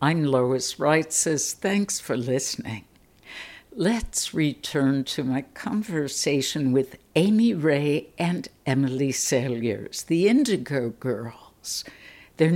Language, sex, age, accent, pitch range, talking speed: English, female, 60-79, American, 130-160 Hz, 105 wpm